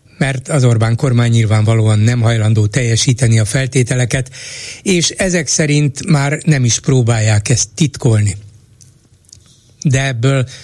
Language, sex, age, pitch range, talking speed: Hungarian, male, 60-79, 115-145 Hz, 120 wpm